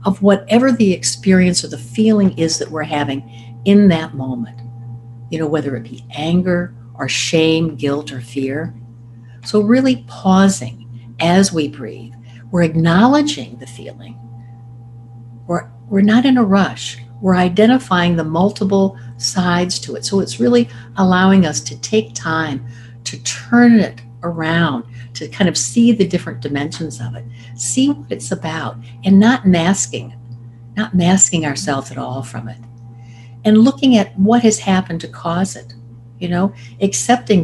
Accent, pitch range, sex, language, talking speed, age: American, 120-190 Hz, female, English, 155 wpm, 60-79